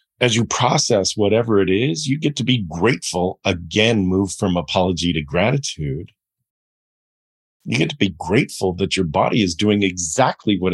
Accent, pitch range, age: American, 85-105 Hz, 40-59